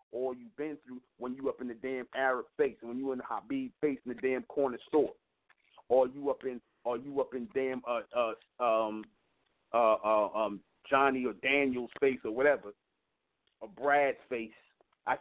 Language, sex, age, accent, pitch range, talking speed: English, male, 40-59, American, 125-145 Hz, 190 wpm